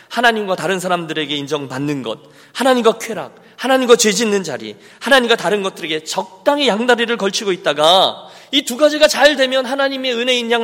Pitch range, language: 170-275 Hz, Korean